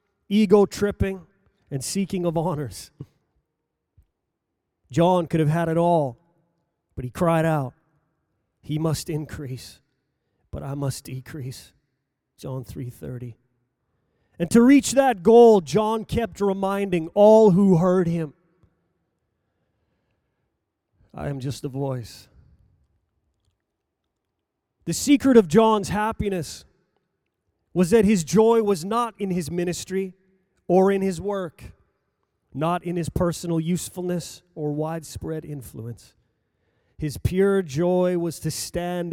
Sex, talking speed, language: male, 110 wpm, English